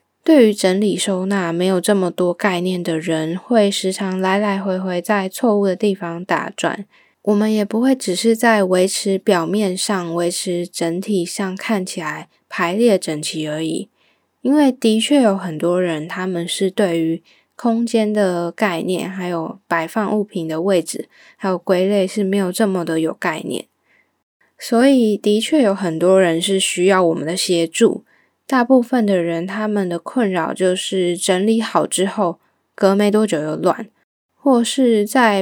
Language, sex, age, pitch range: Chinese, female, 10-29, 175-215 Hz